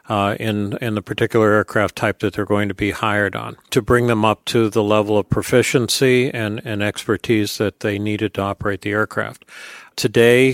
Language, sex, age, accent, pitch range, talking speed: English, male, 50-69, American, 110-130 Hz, 195 wpm